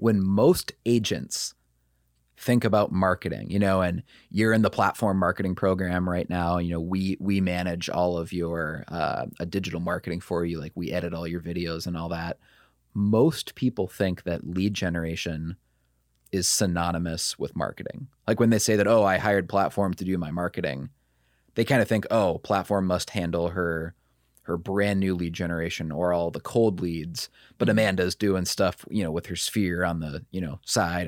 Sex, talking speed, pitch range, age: male, 185 wpm, 85-100 Hz, 30-49